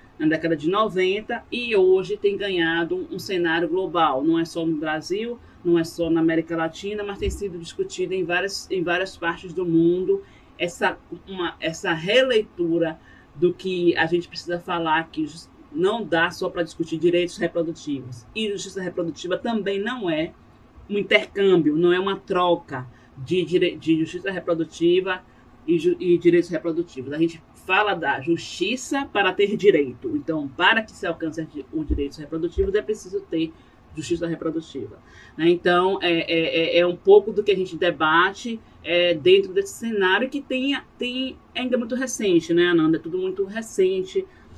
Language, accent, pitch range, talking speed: Portuguese, Brazilian, 165-225 Hz, 160 wpm